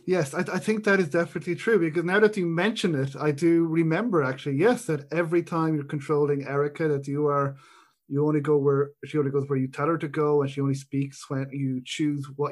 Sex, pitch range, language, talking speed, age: male, 140-175 Hz, English, 240 wpm, 30-49